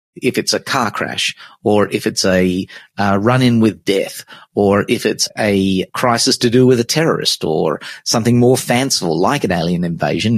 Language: English